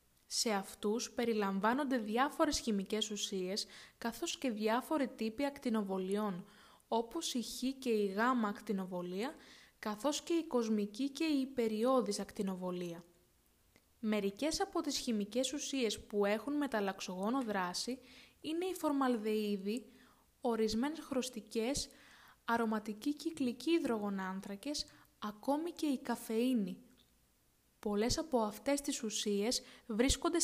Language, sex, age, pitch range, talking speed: Greek, female, 20-39, 205-255 Hz, 105 wpm